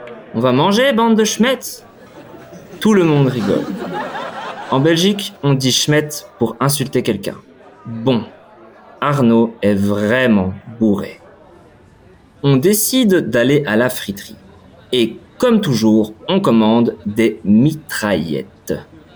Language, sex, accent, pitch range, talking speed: German, male, French, 105-165 Hz, 115 wpm